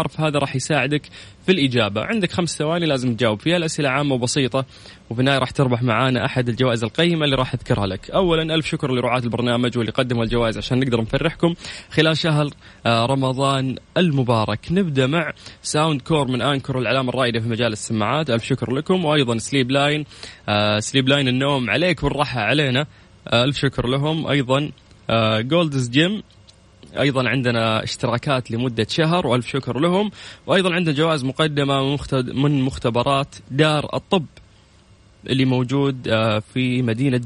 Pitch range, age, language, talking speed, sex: 115-150 Hz, 20-39, Arabic, 150 wpm, male